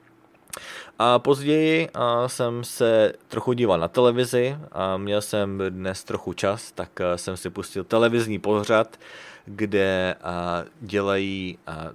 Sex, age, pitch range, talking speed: male, 30-49, 90-120 Hz, 110 wpm